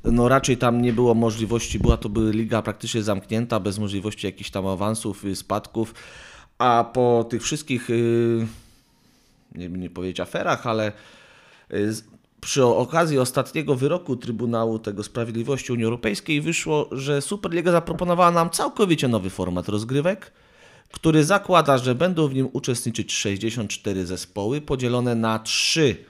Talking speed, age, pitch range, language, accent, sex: 135 wpm, 30-49, 100-135 Hz, Polish, native, male